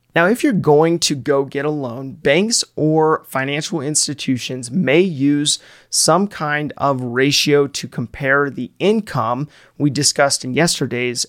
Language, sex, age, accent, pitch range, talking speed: English, male, 30-49, American, 130-155 Hz, 145 wpm